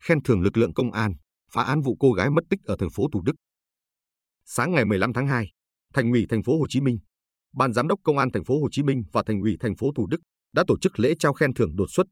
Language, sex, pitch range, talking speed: Vietnamese, male, 100-135 Hz, 275 wpm